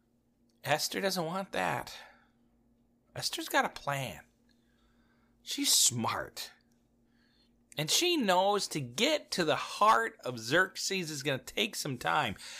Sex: male